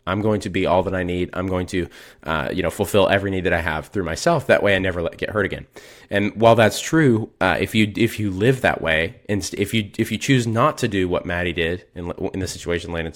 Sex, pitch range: male, 90-110 Hz